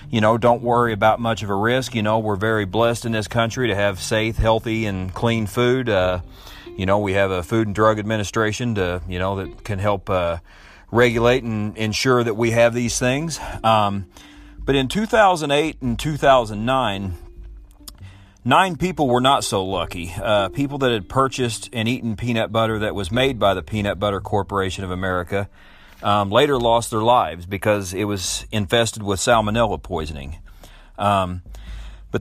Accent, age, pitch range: American, 40-59, 100-115 Hz